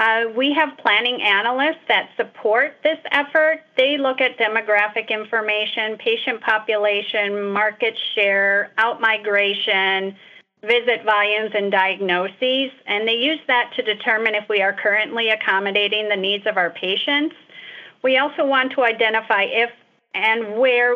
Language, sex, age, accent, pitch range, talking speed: English, female, 40-59, American, 200-245 Hz, 135 wpm